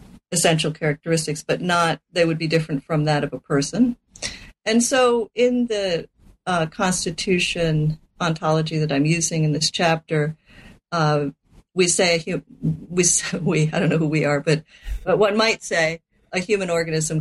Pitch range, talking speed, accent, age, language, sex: 155-185 Hz, 155 wpm, American, 50-69, English, female